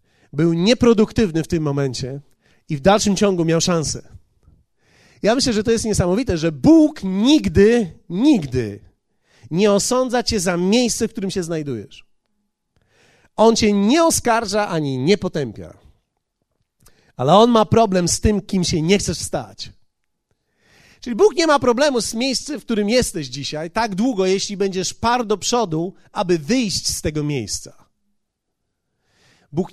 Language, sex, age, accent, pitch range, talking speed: Polish, male, 40-59, native, 150-215 Hz, 145 wpm